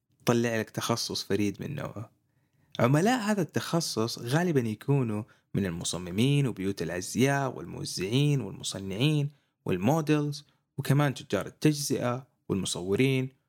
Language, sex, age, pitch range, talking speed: Arabic, male, 20-39, 105-145 Hz, 100 wpm